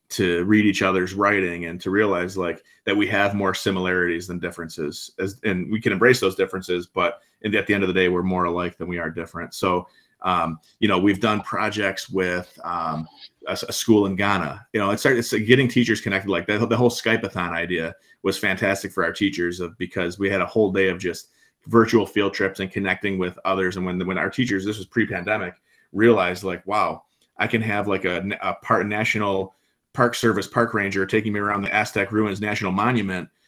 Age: 30-49